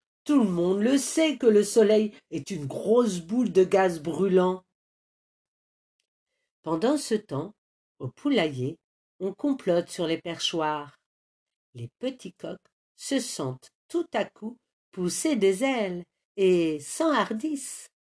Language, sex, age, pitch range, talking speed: French, female, 50-69, 170-255 Hz, 125 wpm